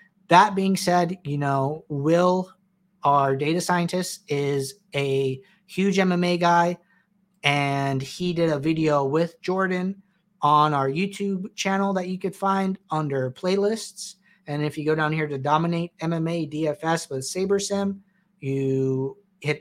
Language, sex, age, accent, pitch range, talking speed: English, male, 30-49, American, 150-190 Hz, 140 wpm